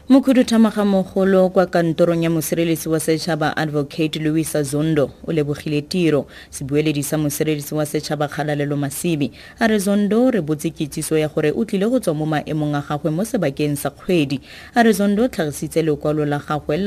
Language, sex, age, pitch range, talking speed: English, female, 30-49, 150-195 Hz, 50 wpm